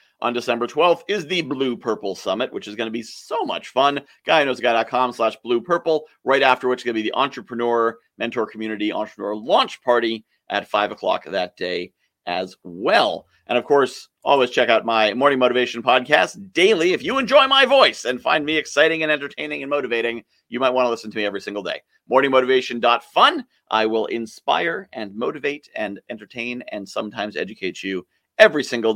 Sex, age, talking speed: male, 40-59, 185 wpm